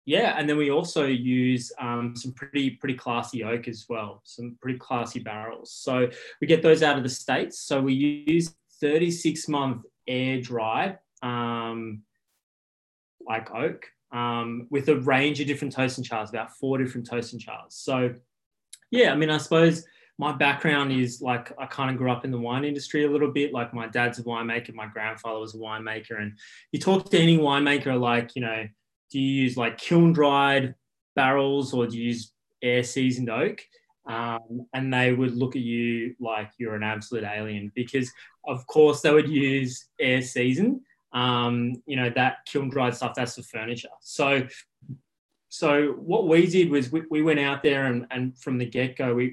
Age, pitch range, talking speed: 20-39, 120-145 Hz, 180 wpm